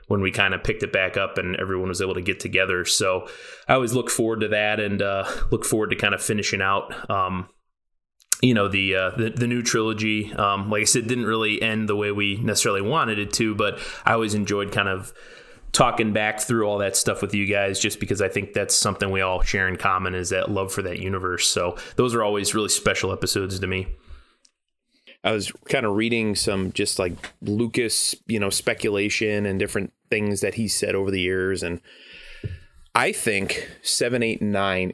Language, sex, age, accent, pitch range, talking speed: English, male, 20-39, American, 95-110 Hz, 210 wpm